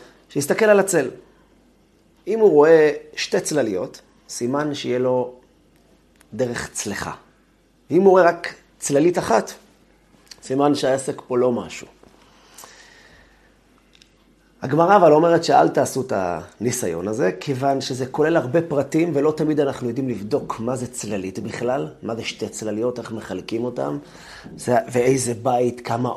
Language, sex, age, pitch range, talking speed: Hebrew, male, 30-49, 115-155 Hz, 130 wpm